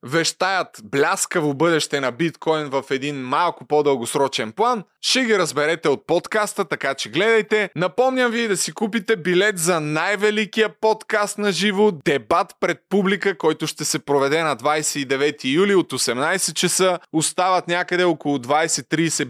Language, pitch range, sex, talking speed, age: Bulgarian, 150-185 Hz, male, 145 wpm, 30-49